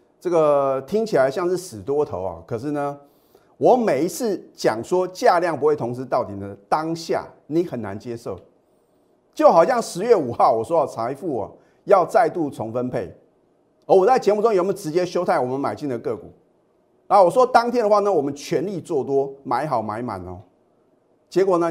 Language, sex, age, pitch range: Chinese, male, 30-49, 125-195 Hz